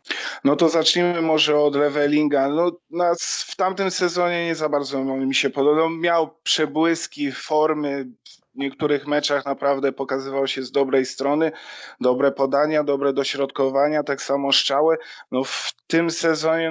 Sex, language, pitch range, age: male, Polish, 140-160 Hz, 20-39